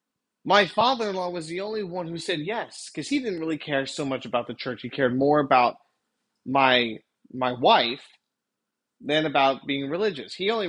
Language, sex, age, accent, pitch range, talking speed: English, male, 30-49, American, 150-230 Hz, 180 wpm